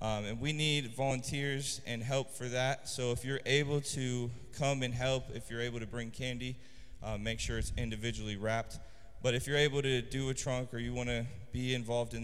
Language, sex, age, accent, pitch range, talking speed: English, male, 20-39, American, 115-140 Hz, 210 wpm